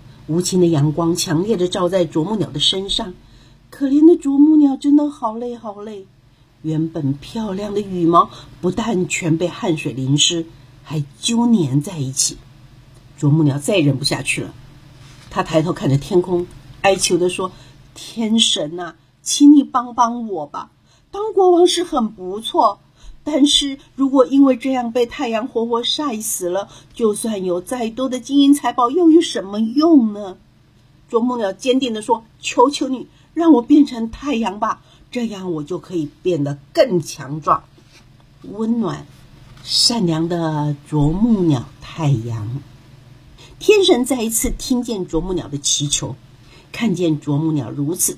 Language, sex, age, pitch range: Chinese, female, 50-69, 145-240 Hz